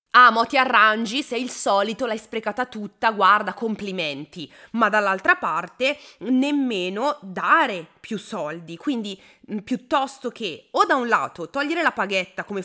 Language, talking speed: Italian, 145 wpm